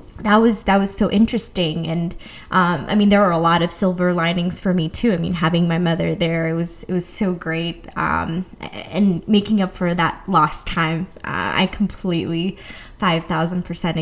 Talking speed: 190 wpm